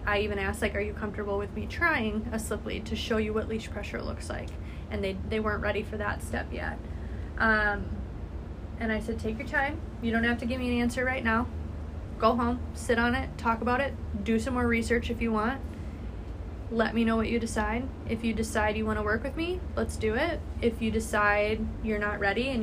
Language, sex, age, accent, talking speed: English, female, 20-39, American, 230 wpm